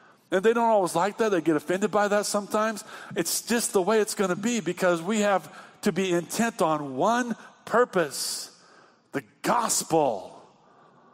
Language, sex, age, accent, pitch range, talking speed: English, male, 50-69, American, 145-185 Hz, 165 wpm